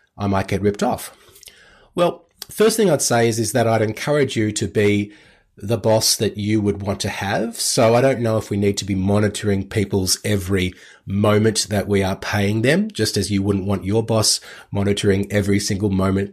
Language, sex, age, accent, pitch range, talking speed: English, male, 30-49, Australian, 100-125 Hz, 200 wpm